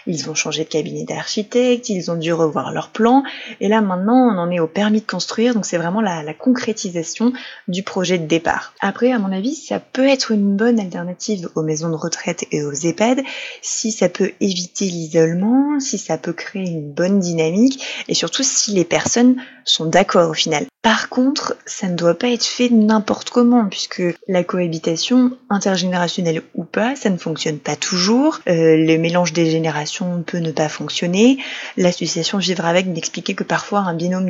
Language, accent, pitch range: French, French, 170-225 Hz